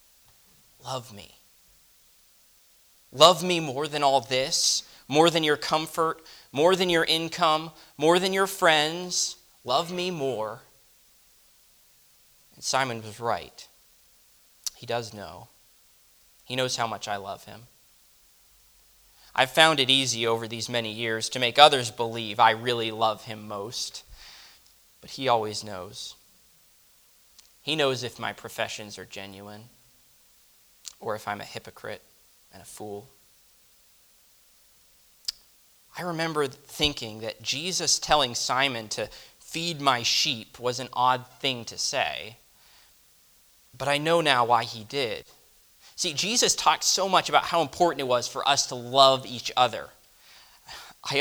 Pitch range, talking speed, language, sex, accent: 115-160 Hz, 135 wpm, English, male, American